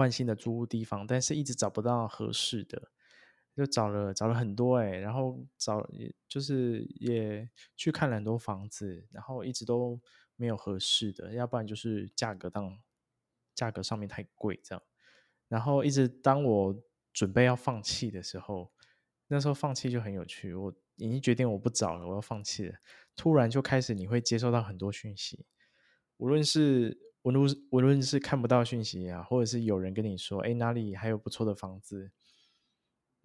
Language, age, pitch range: Chinese, 20-39, 105-125 Hz